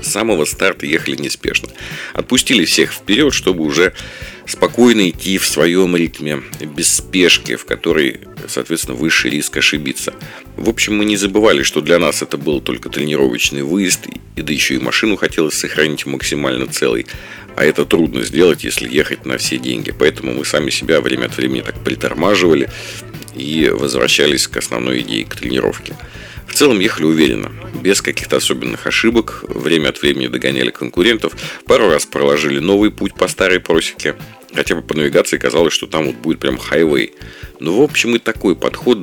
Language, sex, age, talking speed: Russian, male, 40-59, 165 wpm